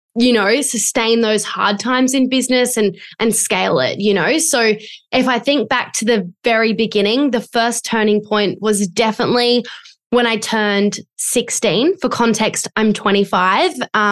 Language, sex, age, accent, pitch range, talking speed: English, female, 10-29, Australian, 205-235 Hz, 155 wpm